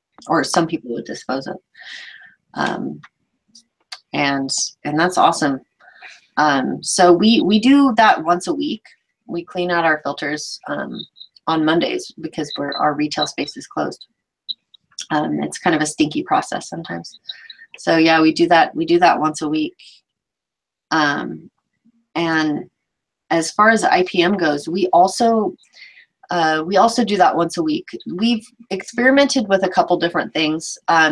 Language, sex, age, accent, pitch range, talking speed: English, female, 30-49, American, 155-205 Hz, 150 wpm